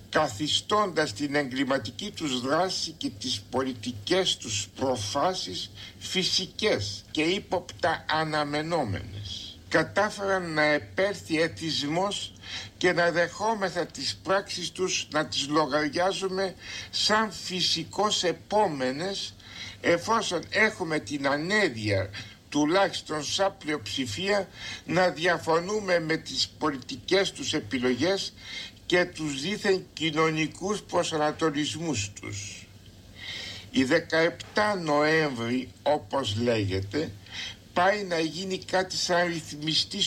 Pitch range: 125-185 Hz